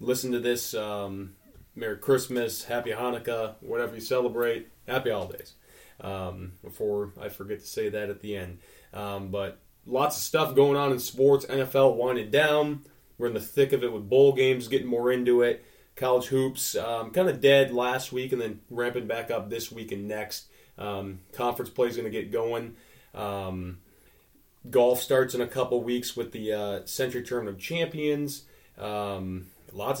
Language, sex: English, male